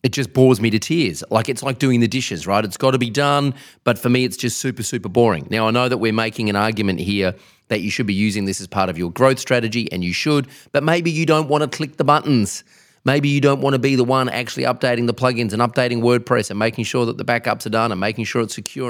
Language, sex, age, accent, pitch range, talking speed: English, male, 30-49, Australian, 105-135 Hz, 275 wpm